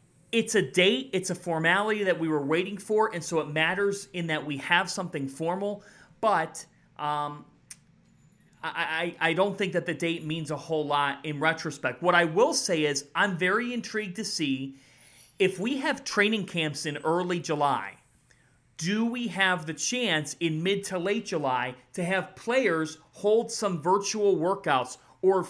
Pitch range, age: 145-185 Hz, 30-49